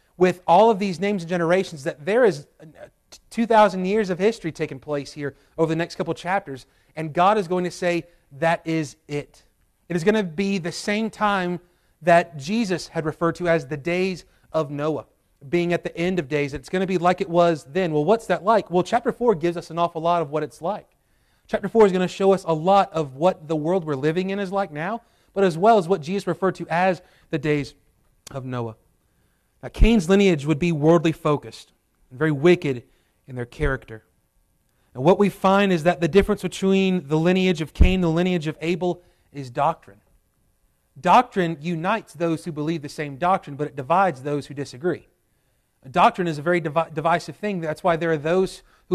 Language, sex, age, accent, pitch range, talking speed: English, male, 30-49, American, 155-185 Hz, 210 wpm